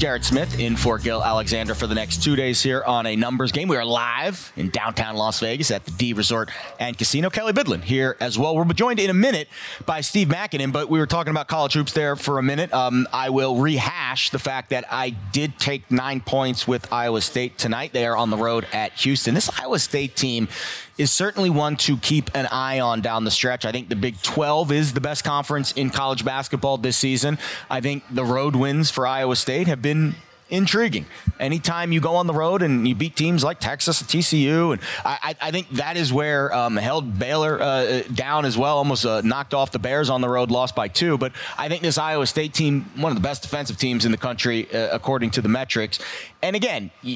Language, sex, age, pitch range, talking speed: English, male, 30-49, 120-155 Hz, 230 wpm